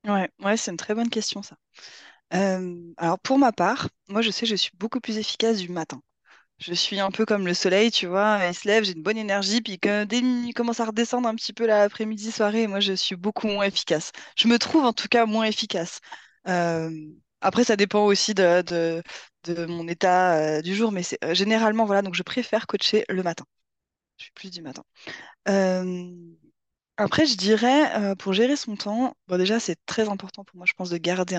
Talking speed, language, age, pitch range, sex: 220 wpm, French, 20-39, 175-215 Hz, female